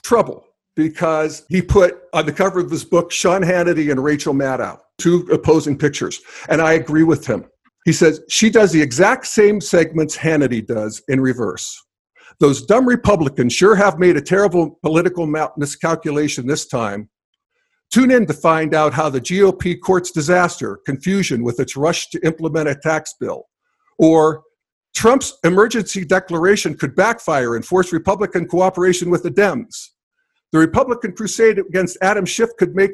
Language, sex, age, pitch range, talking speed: English, male, 50-69, 145-190 Hz, 160 wpm